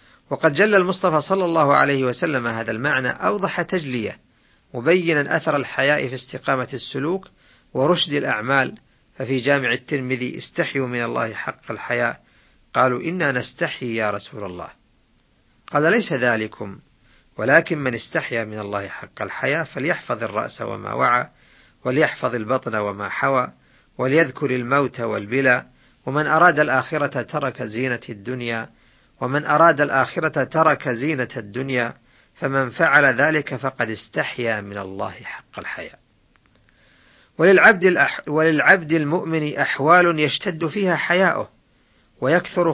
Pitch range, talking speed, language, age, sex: 120-165 Hz, 115 wpm, Arabic, 40-59, male